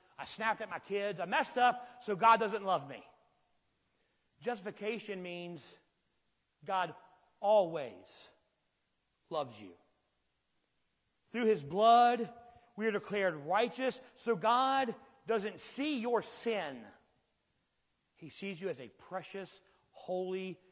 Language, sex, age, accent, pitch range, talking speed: English, male, 40-59, American, 180-235 Hz, 115 wpm